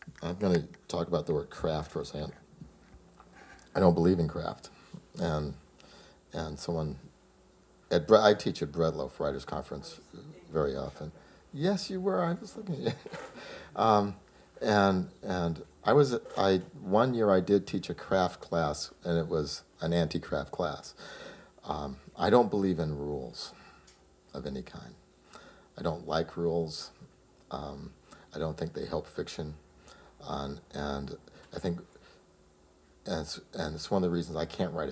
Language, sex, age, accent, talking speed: English, male, 50-69, American, 160 wpm